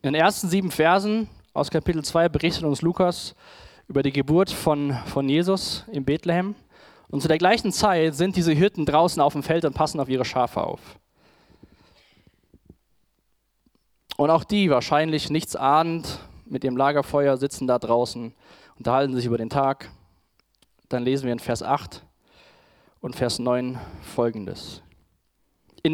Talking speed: 155 wpm